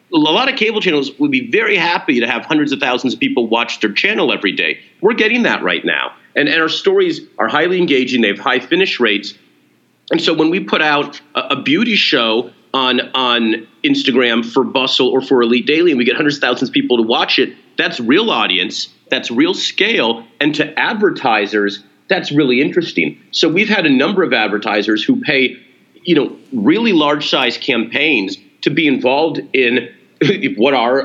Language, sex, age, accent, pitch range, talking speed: English, male, 40-59, American, 115-165 Hz, 195 wpm